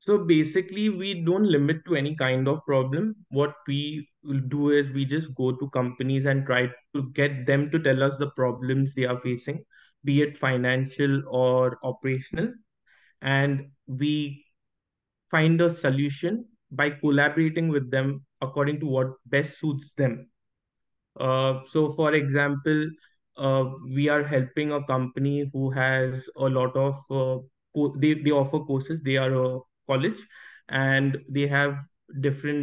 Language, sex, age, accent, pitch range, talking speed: English, male, 20-39, Indian, 130-150 Hz, 150 wpm